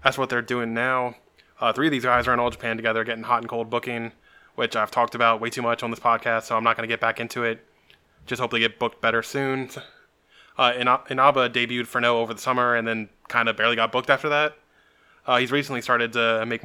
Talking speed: 250 wpm